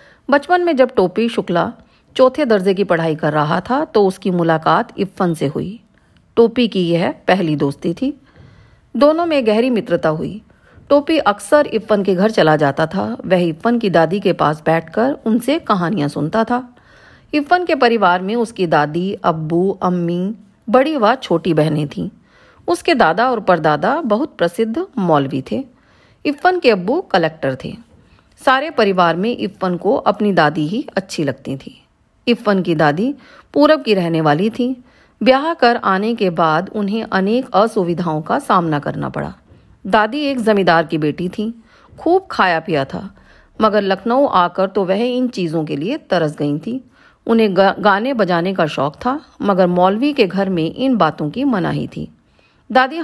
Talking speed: 165 wpm